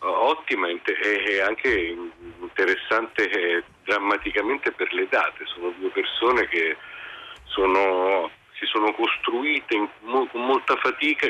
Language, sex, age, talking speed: Italian, male, 50-69, 115 wpm